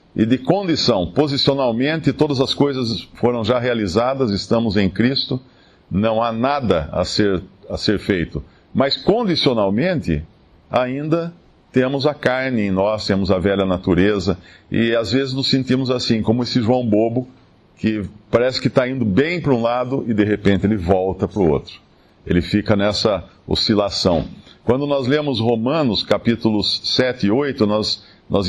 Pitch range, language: 105-140 Hz, Portuguese